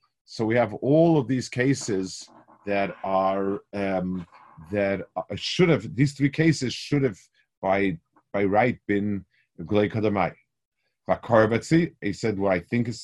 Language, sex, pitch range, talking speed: English, male, 100-130 Hz, 145 wpm